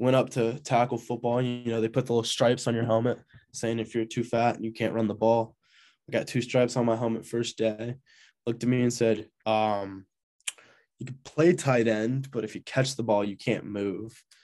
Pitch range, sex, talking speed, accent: 105-120 Hz, male, 230 wpm, American